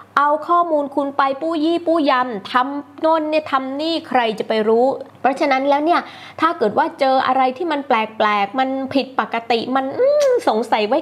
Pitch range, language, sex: 195-260 Hz, Thai, female